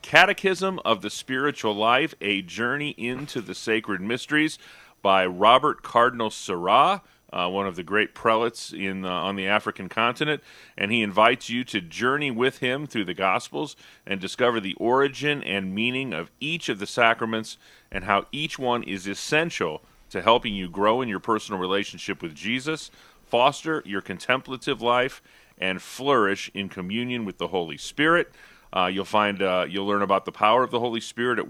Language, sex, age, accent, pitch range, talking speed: English, male, 40-59, American, 95-130 Hz, 170 wpm